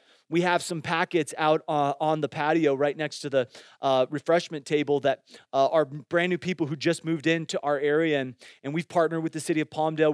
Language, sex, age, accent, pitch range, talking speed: English, male, 30-49, American, 160-195 Hz, 220 wpm